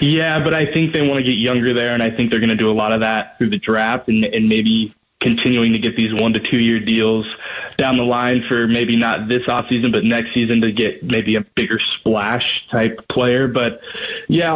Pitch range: 115-140 Hz